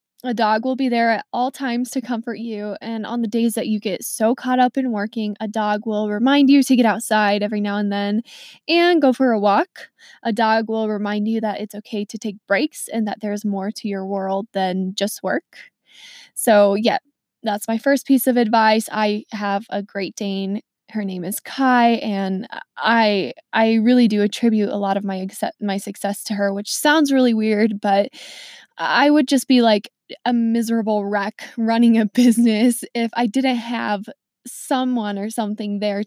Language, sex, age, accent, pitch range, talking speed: English, female, 20-39, American, 205-250 Hz, 195 wpm